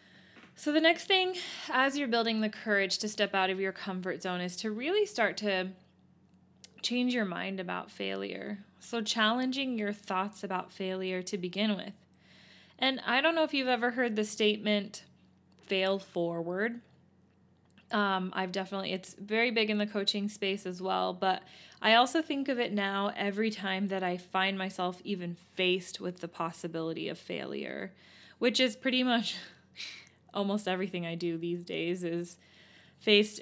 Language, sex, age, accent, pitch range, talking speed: English, female, 20-39, American, 185-235 Hz, 165 wpm